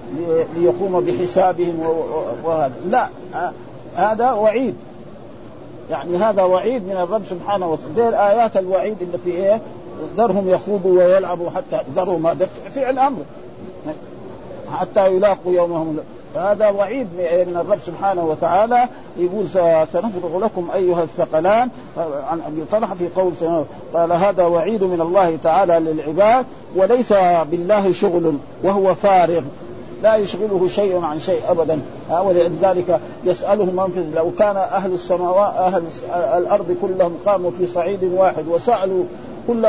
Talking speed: 130 wpm